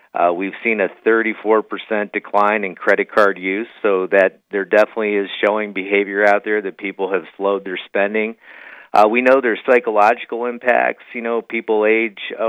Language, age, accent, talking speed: English, 50-69, American, 175 wpm